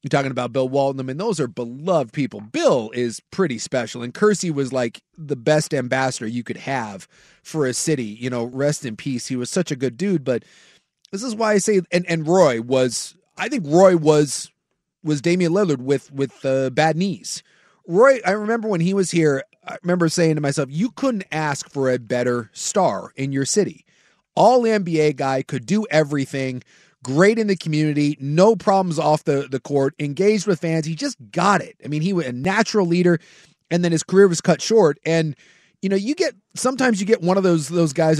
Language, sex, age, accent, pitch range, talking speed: English, male, 30-49, American, 140-180 Hz, 205 wpm